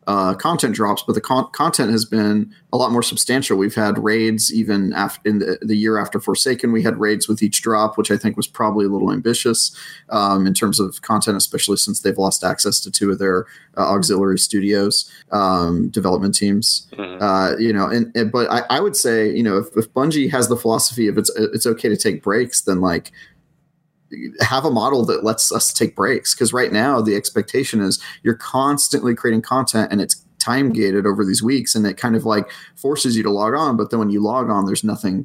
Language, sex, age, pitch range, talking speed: English, male, 30-49, 100-115 Hz, 215 wpm